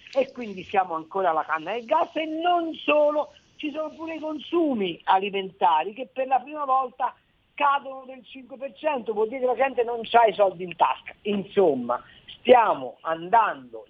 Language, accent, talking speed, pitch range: Italian, native, 170 wpm, 185-260 Hz